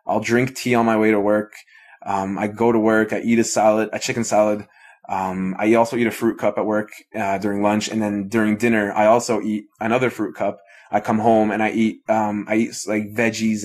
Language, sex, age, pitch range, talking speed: English, male, 20-39, 105-130 Hz, 235 wpm